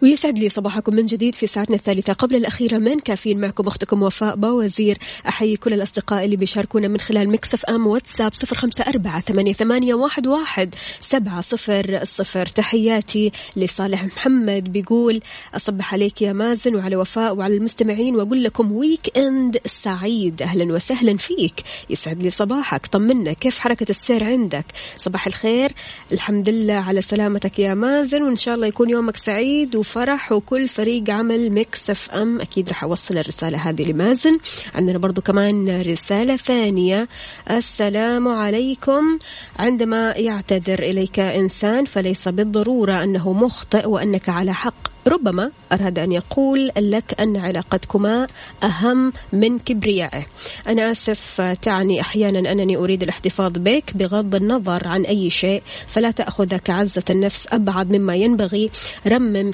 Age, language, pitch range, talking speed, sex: 20-39, Arabic, 195-230 Hz, 135 wpm, female